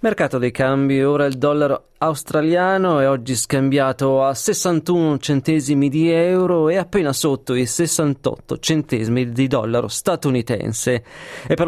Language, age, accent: Italian, 30-49, native